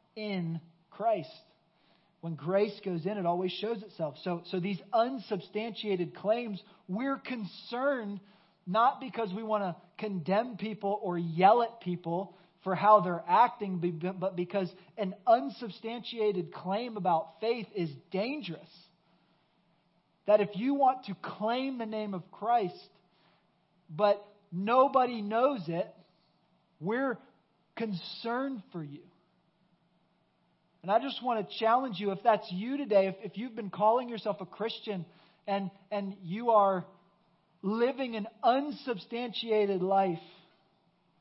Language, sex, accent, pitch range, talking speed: English, male, American, 170-210 Hz, 125 wpm